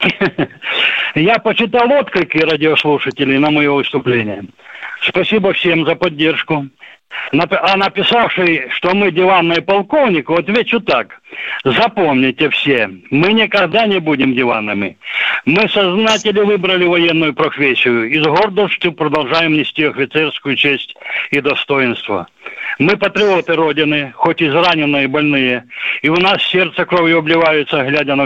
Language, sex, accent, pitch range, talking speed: Russian, male, native, 145-195 Hz, 120 wpm